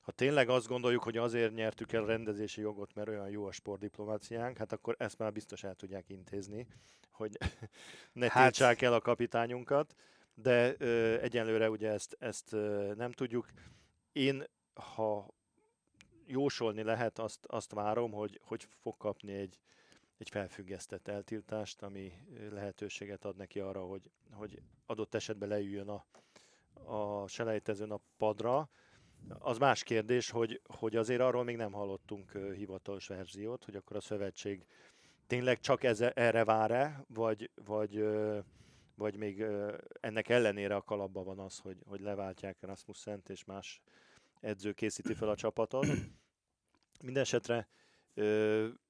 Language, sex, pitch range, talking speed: Hungarian, male, 100-115 Hz, 135 wpm